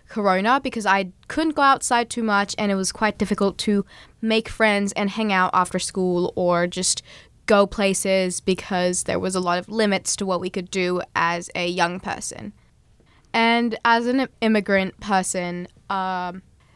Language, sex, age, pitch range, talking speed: English, female, 10-29, 185-220 Hz, 170 wpm